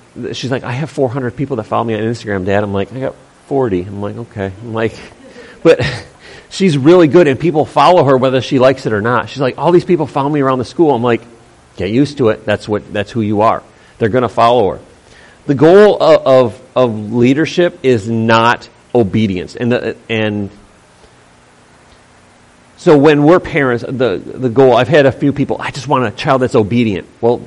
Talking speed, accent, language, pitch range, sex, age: 210 wpm, American, English, 110-145 Hz, male, 40-59